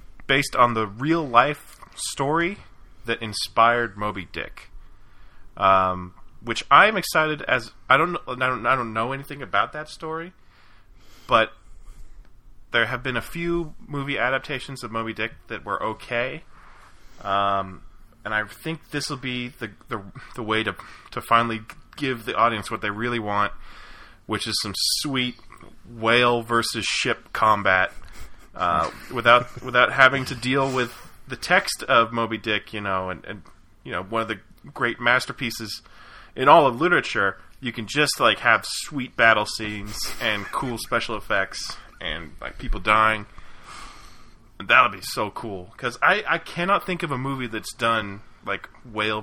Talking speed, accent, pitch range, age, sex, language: 155 wpm, American, 100-130 Hz, 20-39, male, English